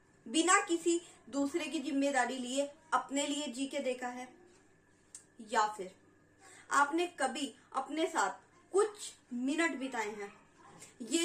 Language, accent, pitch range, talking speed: Hindi, native, 240-335 Hz, 125 wpm